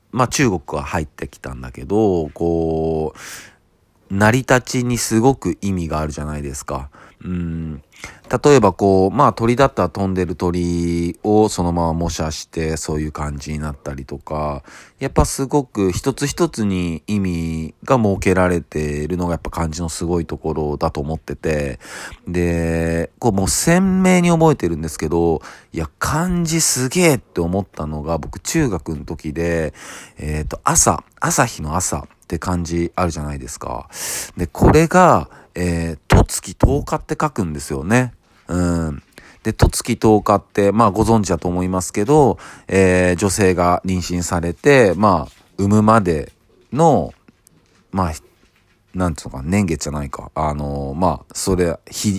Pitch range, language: 80-110 Hz, Japanese